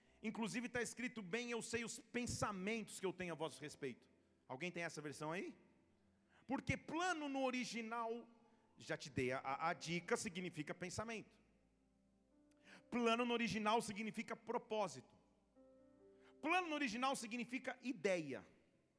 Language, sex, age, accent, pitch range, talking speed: English, male, 40-59, Brazilian, 180-265 Hz, 130 wpm